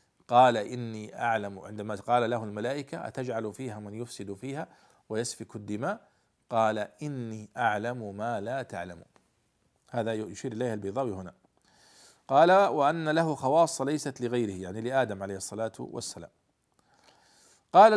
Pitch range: 110-160 Hz